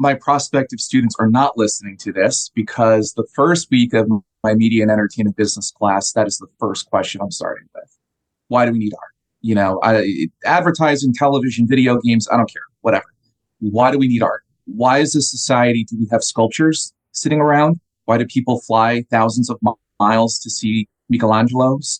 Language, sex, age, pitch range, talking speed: English, male, 30-49, 110-130 Hz, 185 wpm